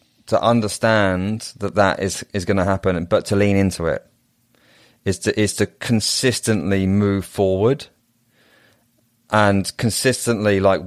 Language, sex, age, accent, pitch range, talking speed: English, male, 30-49, British, 90-105 Hz, 125 wpm